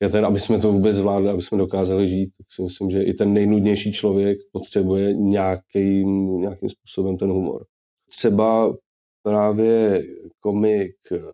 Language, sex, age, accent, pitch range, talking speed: Czech, male, 20-39, native, 95-105 Hz, 145 wpm